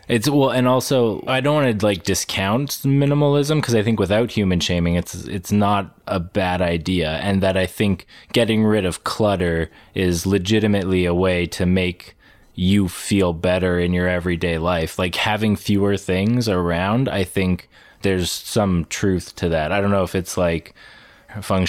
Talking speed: 175 wpm